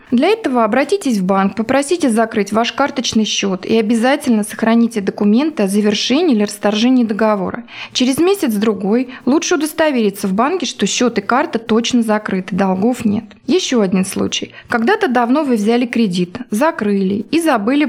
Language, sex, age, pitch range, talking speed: Russian, female, 20-39, 215-265 Hz, 150 wpm